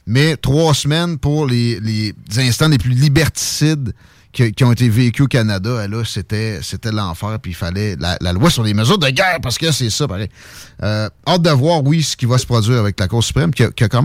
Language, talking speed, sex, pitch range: French, 240 wpm, male, 110-145 Hz